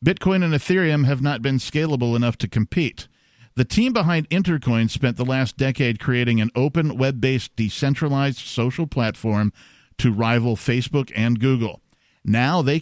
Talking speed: 150 wpm